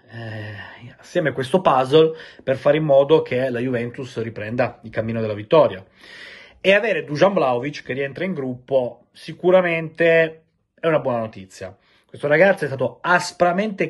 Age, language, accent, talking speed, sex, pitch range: 30-49, Italian, native, 150 wpm, male, 110-140 Hz